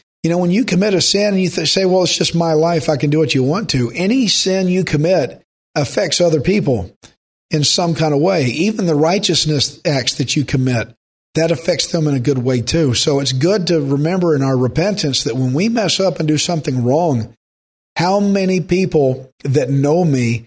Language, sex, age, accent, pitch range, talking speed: English, male, 40-59, American, 140-180 Hz, 210 wpm